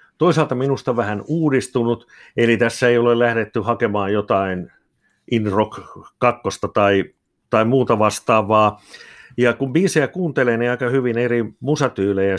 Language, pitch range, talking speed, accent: Finnish, 105-125 Hz, 130 wpm, native